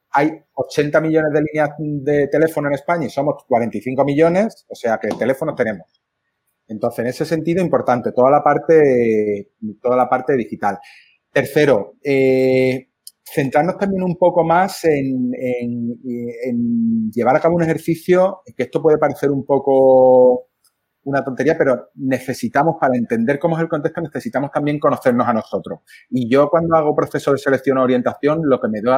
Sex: male